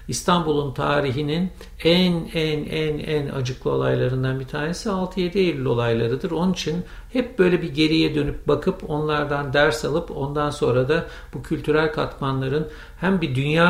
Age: 60-79